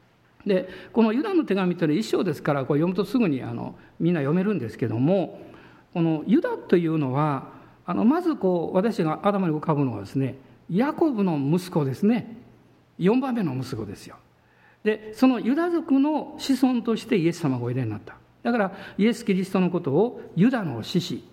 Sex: male